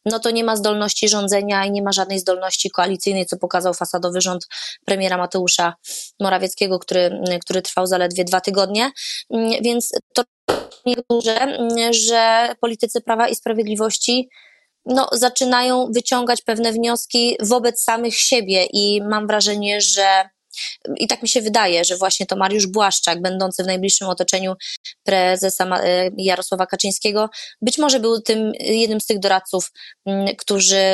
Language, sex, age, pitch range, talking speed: Polish, female, 20-39, 185-230 Hz, 140 wpm